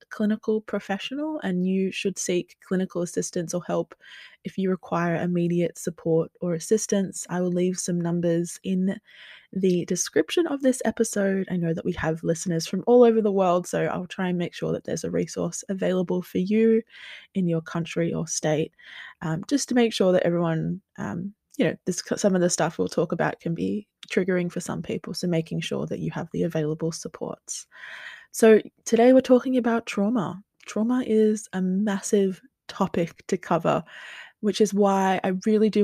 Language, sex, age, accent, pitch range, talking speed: English, female, 20-39, Australian, 170-205 Hz, 180 wpm